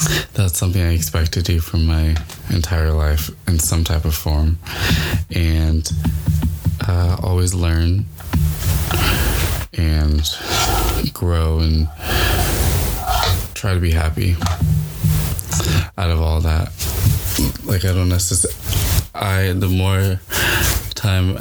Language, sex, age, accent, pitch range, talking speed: English, male, 20-39, American, 80-90 Hz, 105 wpm